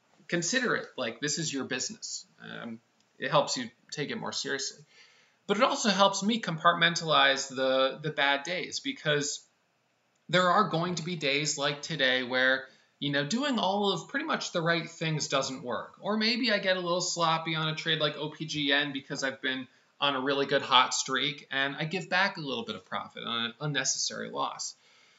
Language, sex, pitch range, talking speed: English, male, 135-180 Hz, 195 wpm